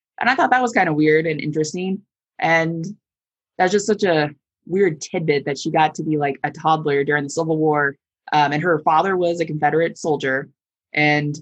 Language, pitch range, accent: English, 150-185 Hz, American